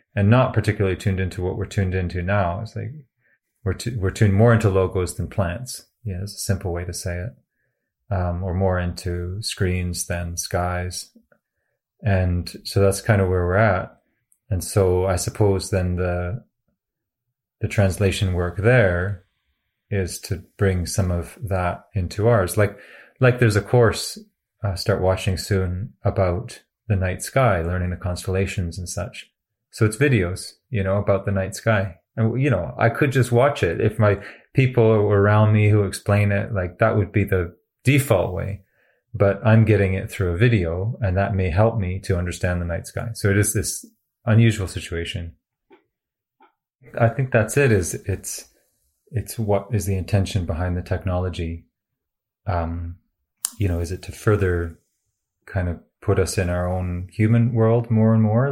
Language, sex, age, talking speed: English, male, 30-49, 170 wpm